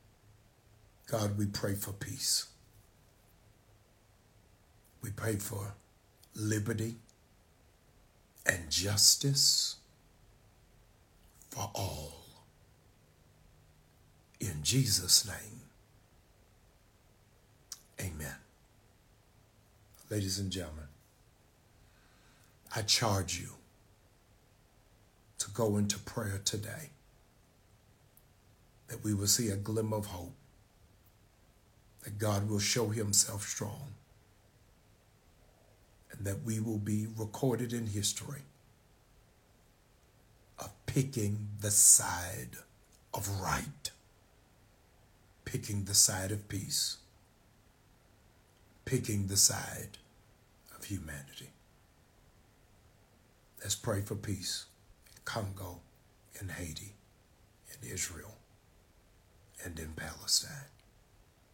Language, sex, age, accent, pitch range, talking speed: English, male, 60-79, American, 100-115 Hz, 75 wpm